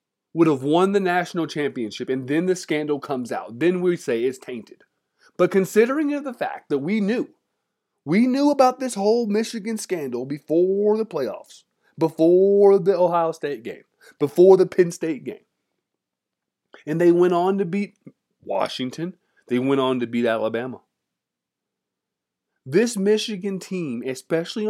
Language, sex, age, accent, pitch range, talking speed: English, male, 30-49, American, 145-210 Hz, 150 wpm